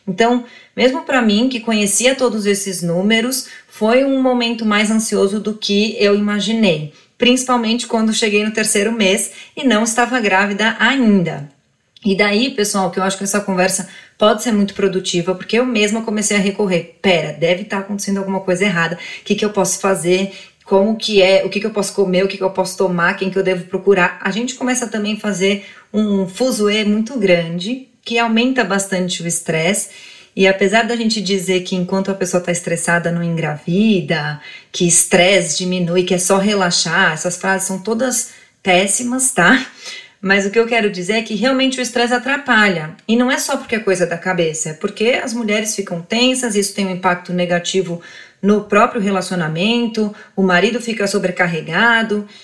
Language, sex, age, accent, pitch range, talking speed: Portuguese, female, 20-39, Brazilian, 185-225 Hz, 180 wpm